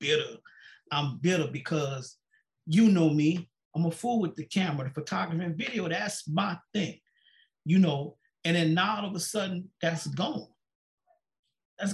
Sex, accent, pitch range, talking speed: male, American, 155-230 Hz, 160 wpm